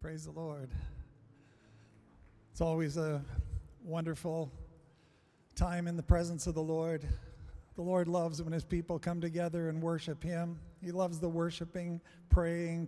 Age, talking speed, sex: 40-59, 140 wpm, male